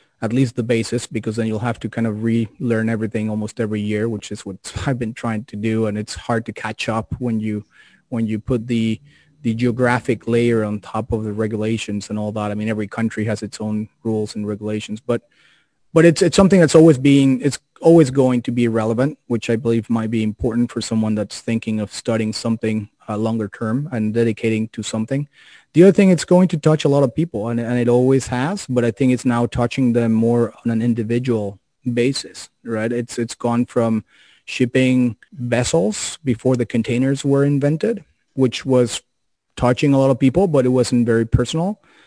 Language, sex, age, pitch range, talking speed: English, male, 30-49, 110-135 Hz, 205 wpm